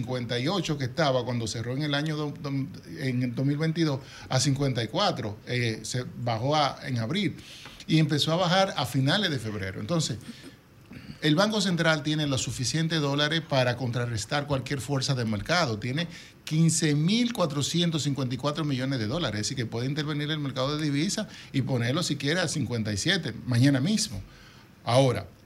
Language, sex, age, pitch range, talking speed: Spanish, male, 50-69, 125-155 Hz, 145 wpm